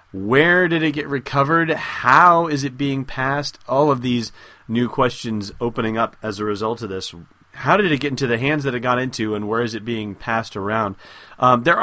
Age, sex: 30-49, male